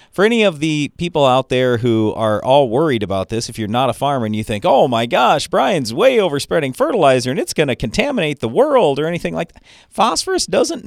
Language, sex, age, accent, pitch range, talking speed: English, male, 40-59, American, 105-150 Hz, 225 wpm